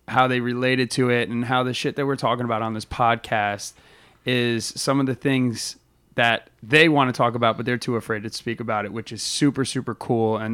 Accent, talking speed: American, 235 wpm